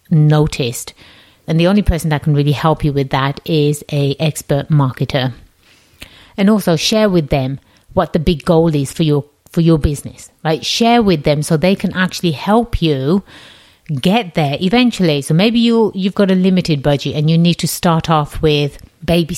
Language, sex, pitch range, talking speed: English, female, 140-175 Hz, 185 wpm